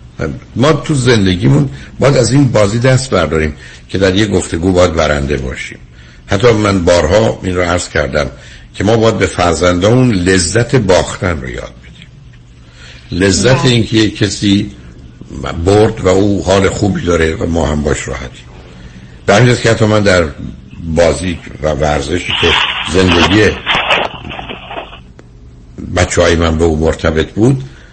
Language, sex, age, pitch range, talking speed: Persian, male, 60-79, 70-110 Hz, 140 wpm